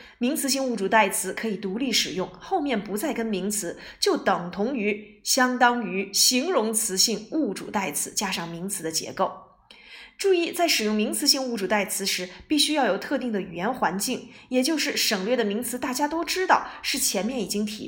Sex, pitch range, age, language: female, 190-260 Hz, 20-39, Chinese